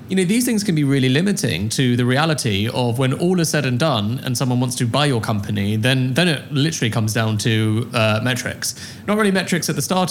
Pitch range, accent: 115-140 Hz, British